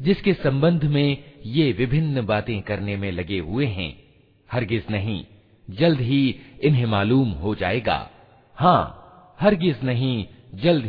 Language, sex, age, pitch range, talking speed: Hindi, male, 50-69, 105-160 Hz, 125 wpm